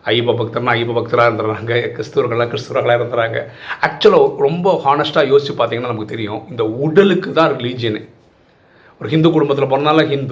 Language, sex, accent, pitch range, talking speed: Tamil, male, native, 110-155 Hz, 140 wpm